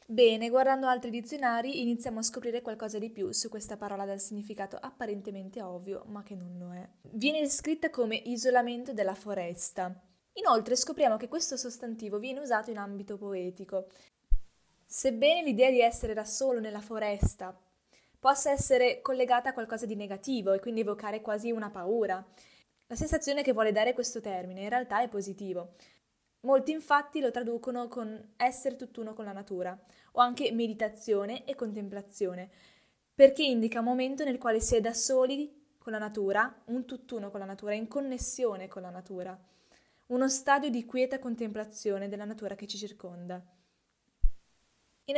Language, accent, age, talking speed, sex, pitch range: Italian, native, 20-39, 160 wpm, female, 200-255 Hz